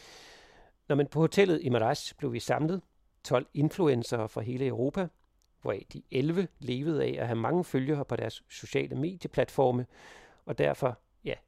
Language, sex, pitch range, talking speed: Danish, male, 120-155 Hz, 155 wpm